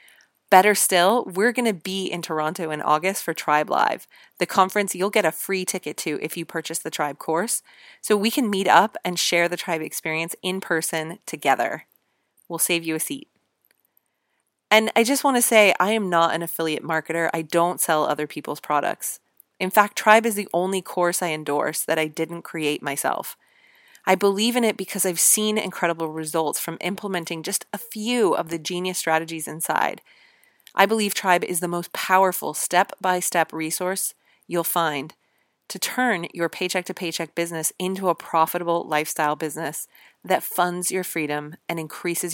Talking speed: 175 wpm